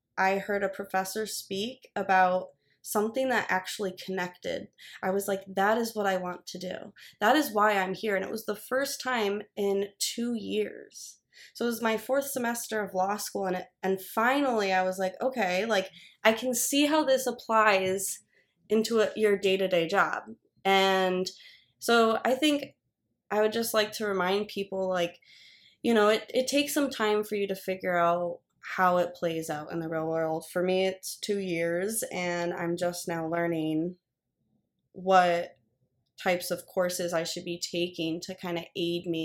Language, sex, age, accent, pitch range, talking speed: English, female, 20-39, American, 175-215 Hz, 180 wpm